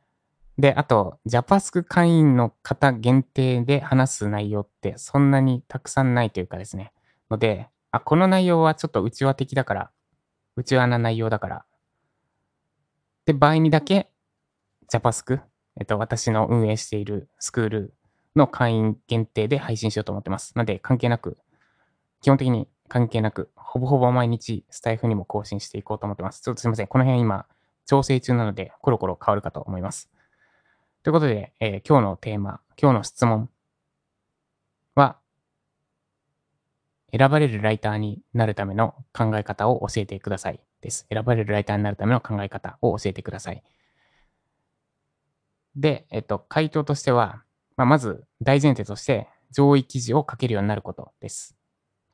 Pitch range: 105-140 Hz